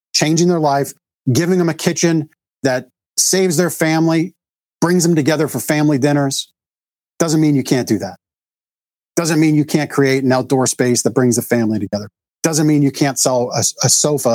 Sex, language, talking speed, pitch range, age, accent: male, English, 185 wpm, 115-150 Hz, 40-59, American